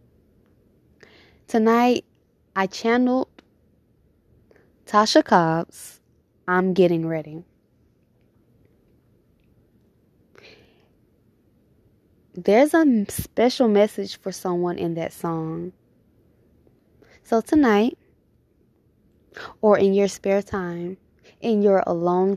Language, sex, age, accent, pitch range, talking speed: English, female, 20-39, American, 160-210 Hz, 70 wpm